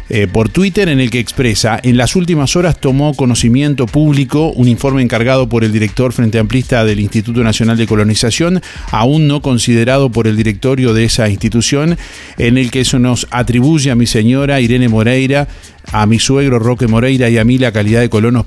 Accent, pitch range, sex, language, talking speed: Argentinian, 110-135 Hz, male, Spanish, 190 wpm